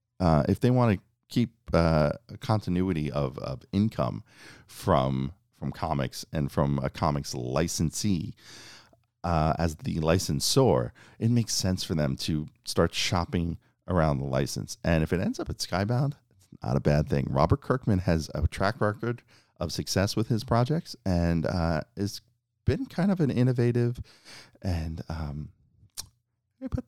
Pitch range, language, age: 75-115 Hz, English, 40-59